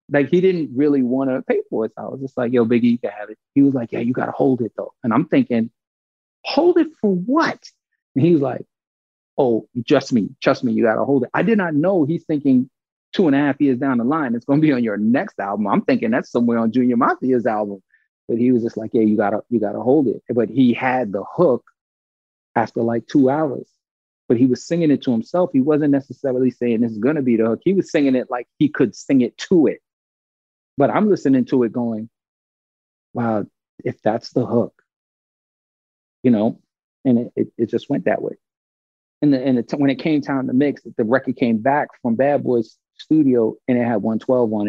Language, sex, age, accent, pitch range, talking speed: English, male, 30-49, American, 115-145 Hz, 240 wpm